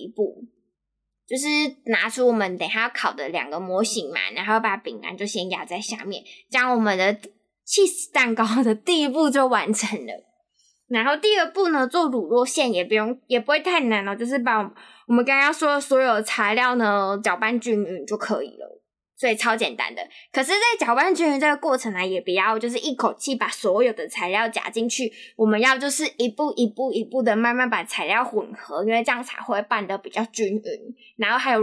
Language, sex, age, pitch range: Chinese, female, 10-29, 210-255 Hz